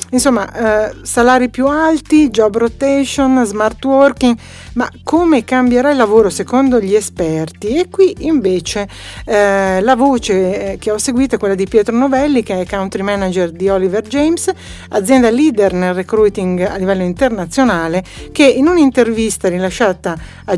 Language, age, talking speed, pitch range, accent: Italian, 60-79, 145 wpm, 190-250 Hz, native